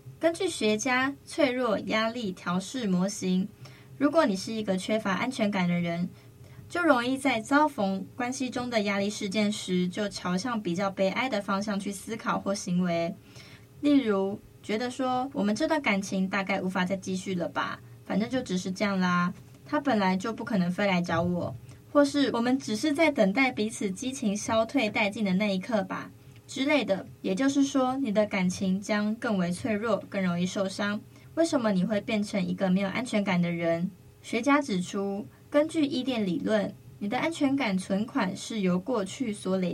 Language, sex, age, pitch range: Chinese, female, 20-39, 190-250 Hz